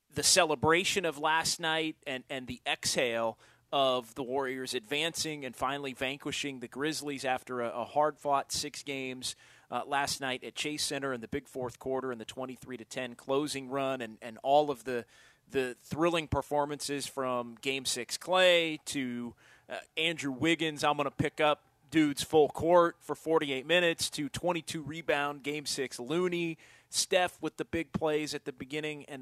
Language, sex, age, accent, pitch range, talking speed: English, male, 30-49, American, 130-160 Hz, 170 wpm